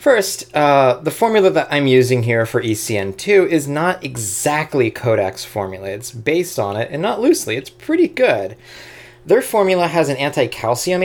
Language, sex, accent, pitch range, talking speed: English, male, American, 110-150 Hz, 165 wpm